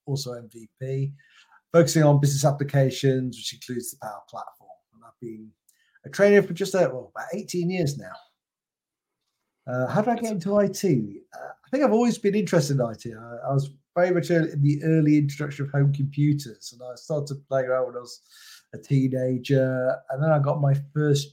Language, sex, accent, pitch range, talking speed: English, male, British, 125-150 Hz, 185 wpm